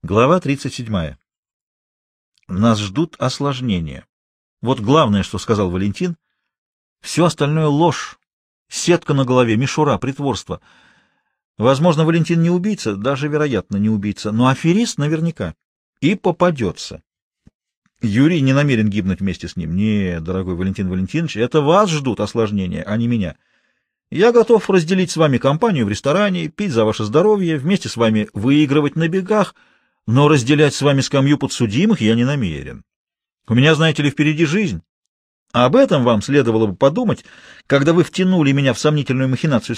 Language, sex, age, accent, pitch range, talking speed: Russian, male, 40-59, native, 115-175 Hz, 145 wpm